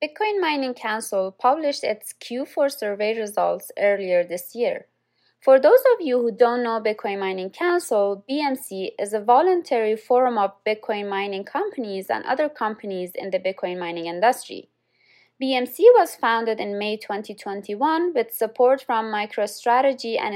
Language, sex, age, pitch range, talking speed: English, female, 20-39, 200-265 Hz, 145 wpm